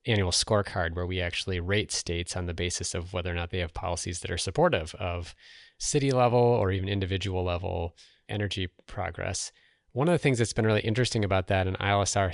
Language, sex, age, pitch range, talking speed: English, male, 30-49, 95-115 Hz, 200 wpm